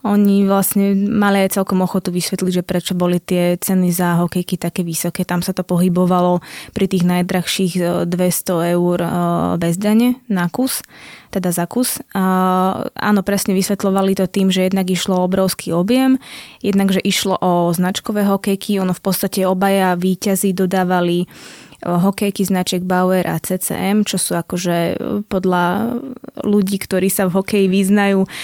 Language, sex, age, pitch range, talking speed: Slovak, female, 20-39, 185-205 Hz, 145 wpm